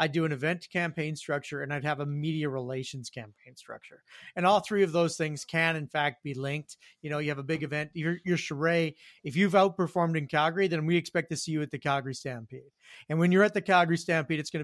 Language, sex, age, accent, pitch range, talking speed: English, male, 30-49, American, 150-175 Hz, 240 wpm